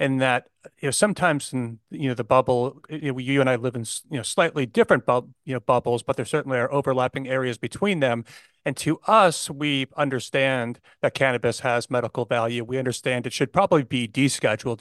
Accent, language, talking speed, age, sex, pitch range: American, English, 200 wpm, 40-59, male, 125-140 Hz